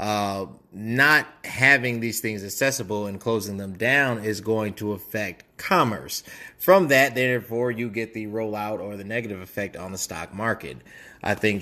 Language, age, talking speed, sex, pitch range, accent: English, 30-49, 165 wpm, male, 95-115 Hz, American